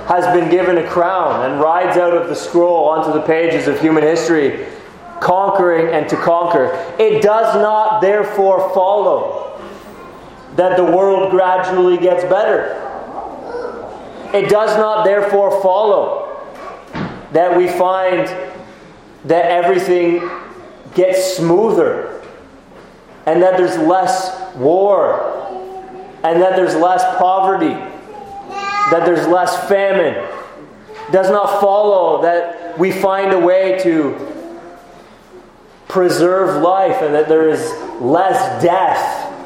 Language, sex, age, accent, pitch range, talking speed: English, male, 30-49, American, 175-205 Hz, 115 wpm